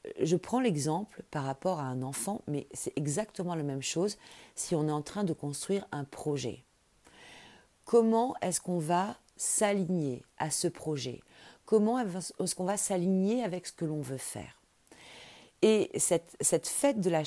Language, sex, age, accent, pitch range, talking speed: French, female, 40-59, French, 145-185 Hz, 165 wpm